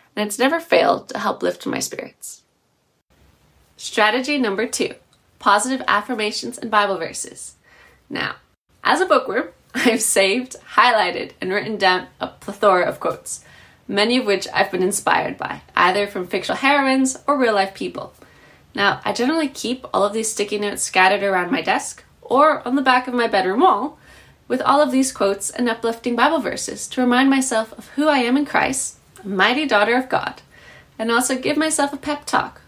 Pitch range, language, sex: 200-255 Hz, English, female